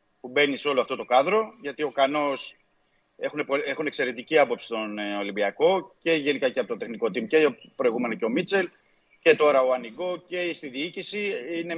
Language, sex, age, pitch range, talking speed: Greek, male, 30-49, 130-165 Hz, 180 wpm